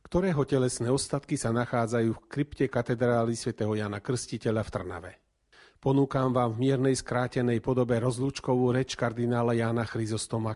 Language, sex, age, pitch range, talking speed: Slovak, male, 40-59, 115-140 Hz, 135 wpm